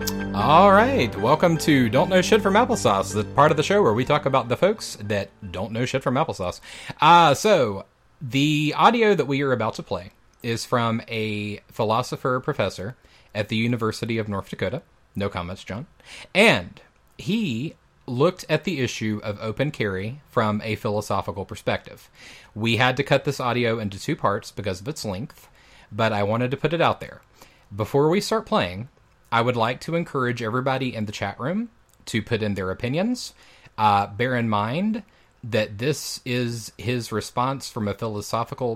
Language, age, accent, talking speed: English, 30-49, American, 180 wpm